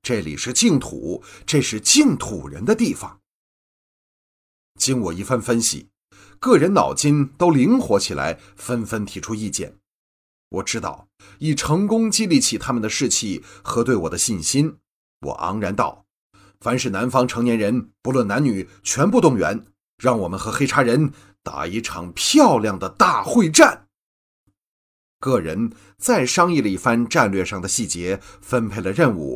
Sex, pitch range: male, 100-155 Hz